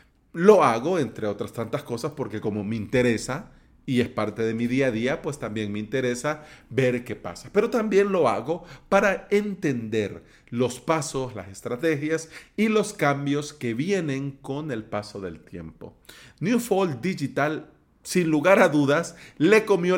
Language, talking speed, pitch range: Spanish, 160 wpm, 115-155 Hz